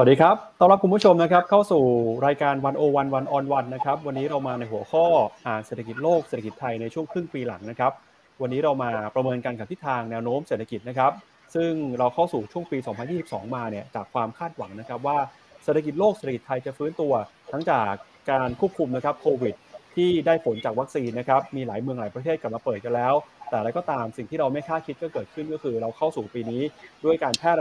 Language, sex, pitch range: Thai, male, 115-155 Hz